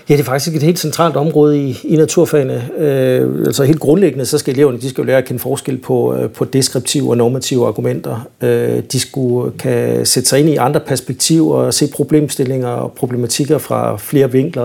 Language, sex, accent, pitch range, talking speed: Danish, male, native, 125-155 Hz, 195 wpm